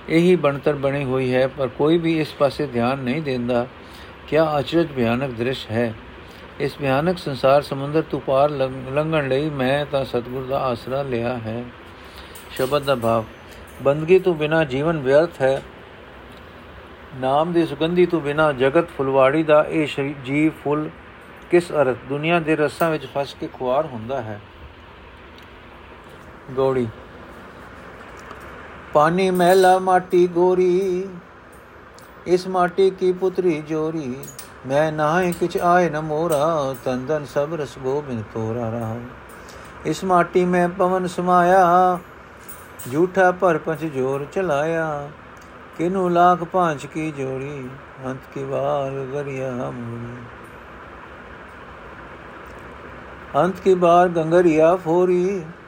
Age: 50-69